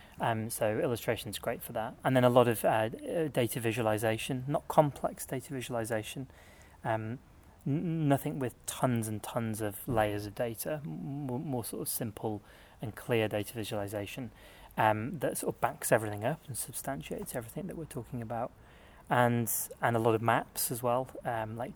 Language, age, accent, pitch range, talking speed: English, 30-49, British, 110-140 Hz, 175 wpm